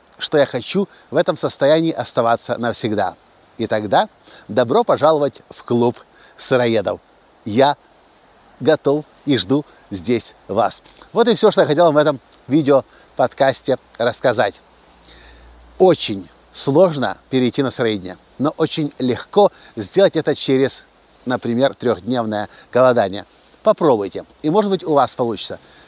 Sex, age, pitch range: male, 50-69, 115-165 Hz